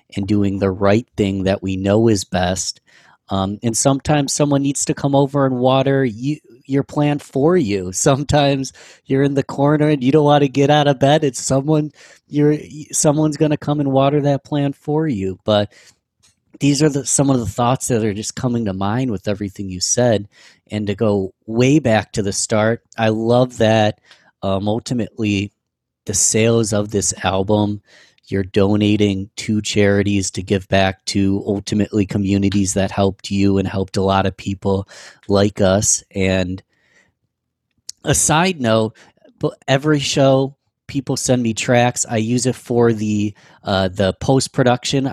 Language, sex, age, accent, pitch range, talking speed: English, male, 30-49, American, 100-135 Hz, 170 wpm